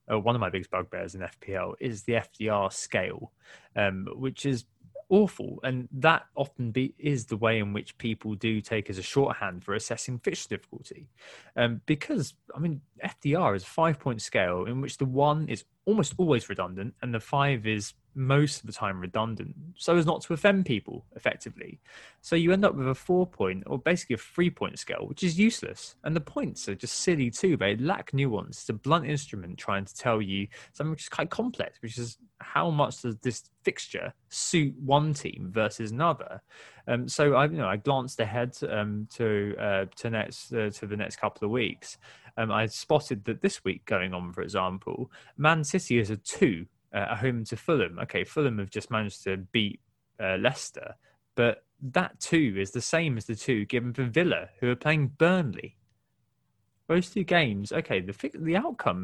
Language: English